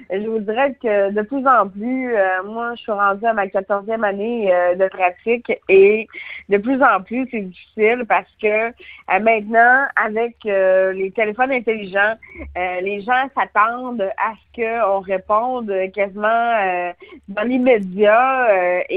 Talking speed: 155 wpm